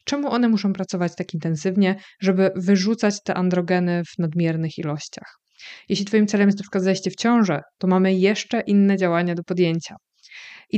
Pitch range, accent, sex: 180-210 Hz, native, female